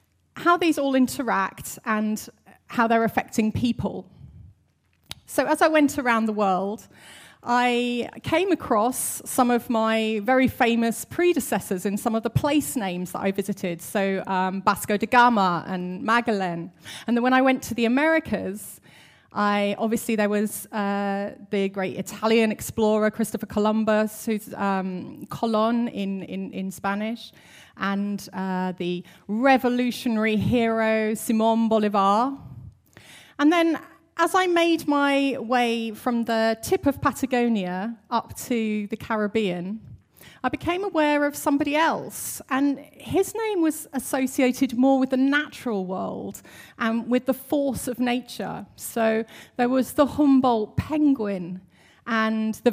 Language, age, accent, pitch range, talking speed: English, 30-49, British, 210-275 Hz, 135 wpm